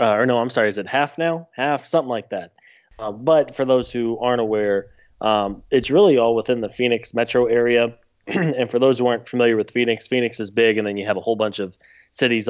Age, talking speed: 20-39, 235 wpm